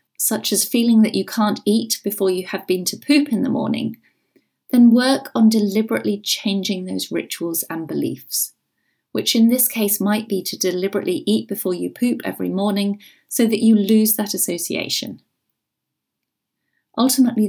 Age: 30-49